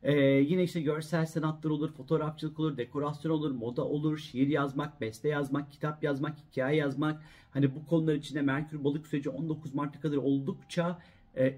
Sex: male